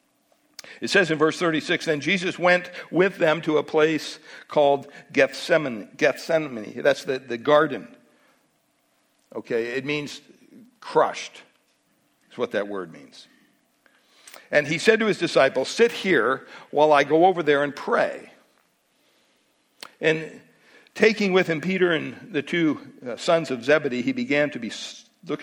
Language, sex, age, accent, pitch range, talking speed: English, male, 60-79, American, 150-215 Hz, 140 wpm